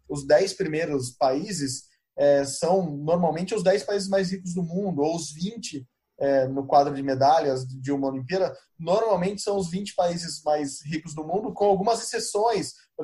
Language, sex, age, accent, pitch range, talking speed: Portuguese, male, 20-39, Brazilian, 140-190 Hz, 175 wpm